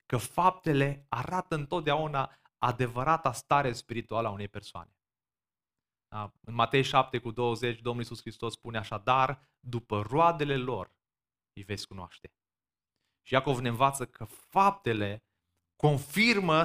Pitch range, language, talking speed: 120-155 Hz, Romanian, 125 wpm